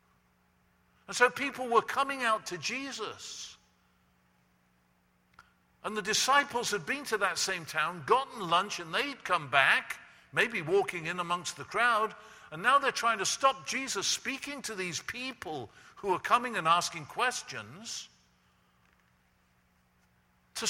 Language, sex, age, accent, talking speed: English, male, 50-69, British, 135 wpm